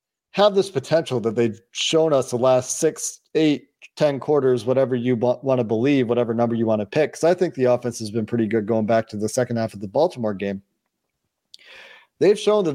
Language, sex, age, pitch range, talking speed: English, male, 40-59, 120-145 Hz, 220 wpm